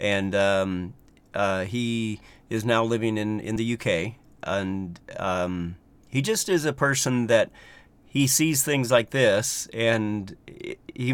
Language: English